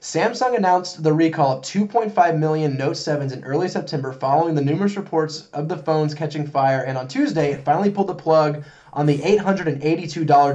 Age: 20-39